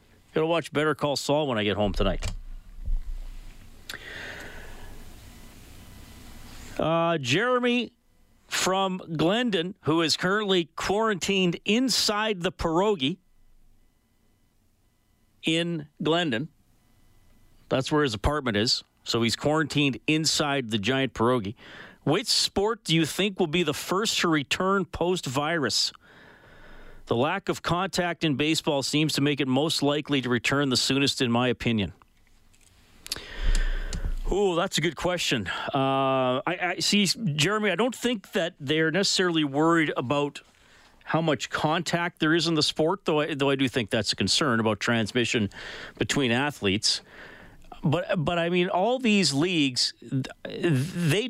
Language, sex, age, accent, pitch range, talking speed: English, male, 40-59, American, 110-170 Hz, 135 wpm